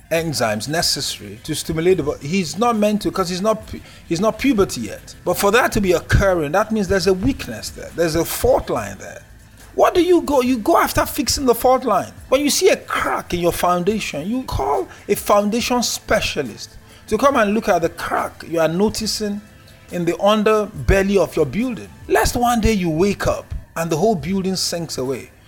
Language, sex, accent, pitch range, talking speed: English, male, Nigerian, 140-215 Hz, 205 wpm